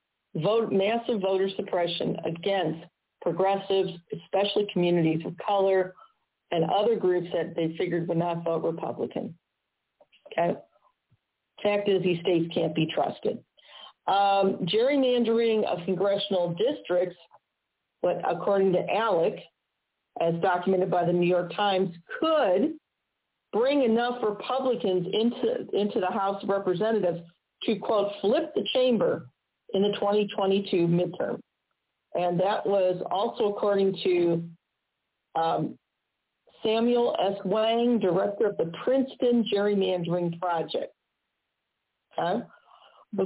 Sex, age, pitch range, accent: female, 50-69, 180-220 Hz, American